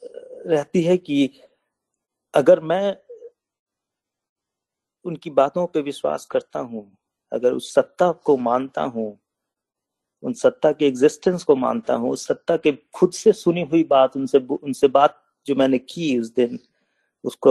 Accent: native